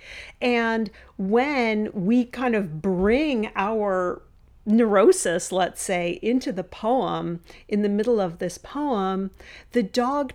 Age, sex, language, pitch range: 40-59, female, English, 185-240 Hz